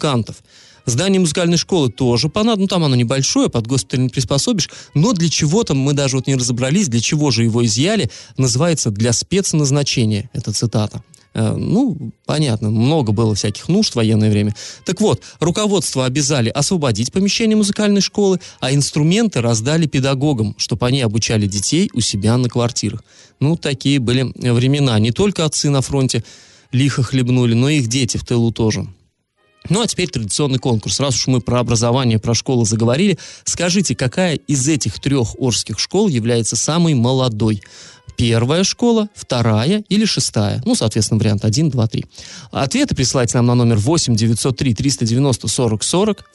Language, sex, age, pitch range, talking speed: Russian, male, 20-39, 115-160 Hz, 150 wpm